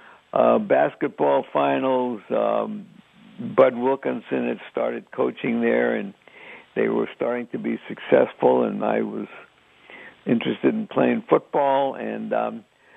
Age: 60-79